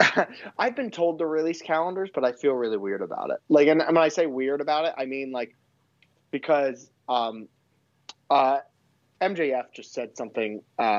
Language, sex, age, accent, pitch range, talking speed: English, male, 30-49, American, 115-155 Hz, 170 wpm